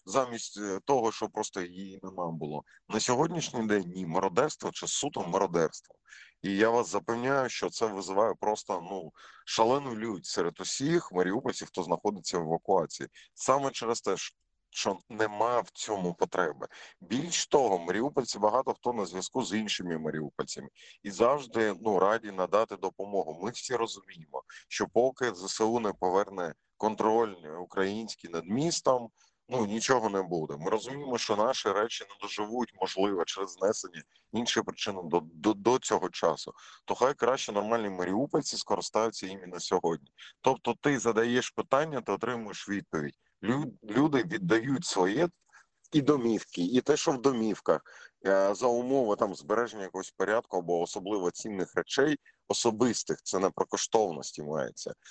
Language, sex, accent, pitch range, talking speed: Ukrainian, male, native, 95-120 Hz, 145 wpm